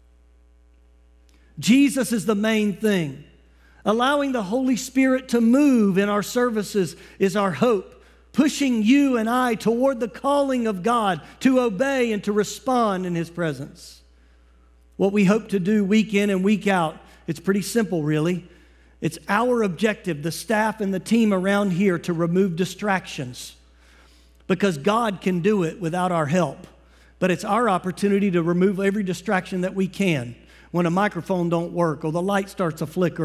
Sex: male